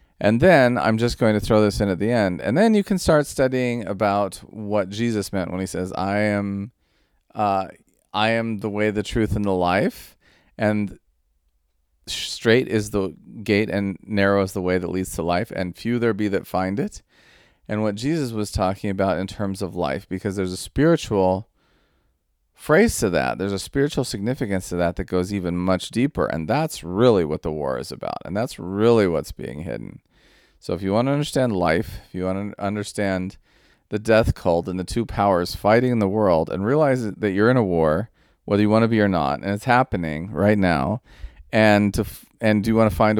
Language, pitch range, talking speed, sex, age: English, 90-110 Hz, 210 wpm, male, 40-59